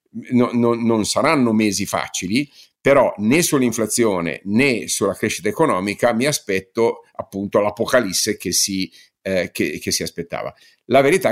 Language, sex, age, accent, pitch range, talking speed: Italian, male, 50-69, native, 100-120 Hz, 110 wpm